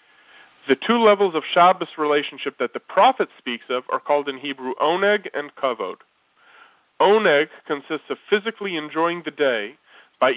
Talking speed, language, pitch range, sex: 150 wpm, English, 140-190 Hz, male